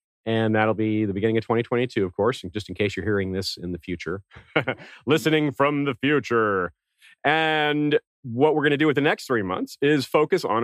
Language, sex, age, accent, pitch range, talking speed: English, male, 40-59, American, 90-130 Hz, 205 wpm